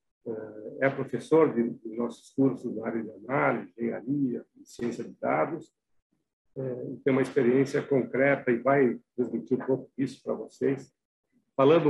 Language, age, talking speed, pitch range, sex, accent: Portuguese, 60-79, 155 wpm, 120-155 Hz, male, Brazilian